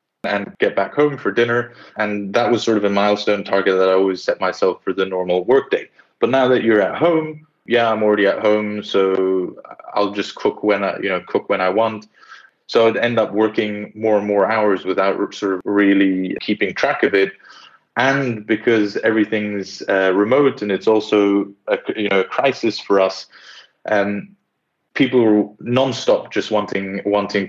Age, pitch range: 20-39, 95-105 Hz